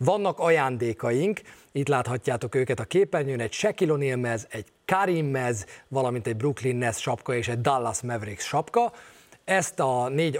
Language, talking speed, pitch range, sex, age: Hungarian, 155 wpm, 115-150 Hz, male, 30-49